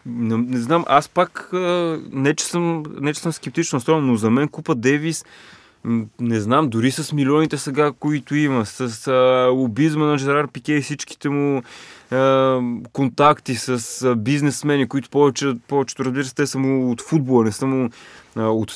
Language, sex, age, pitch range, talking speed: Bulgarian, male, 20-39, 120-145 Hz, 155 wpm